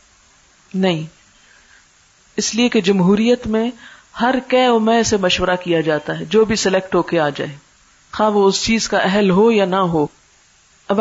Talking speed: 170 wpm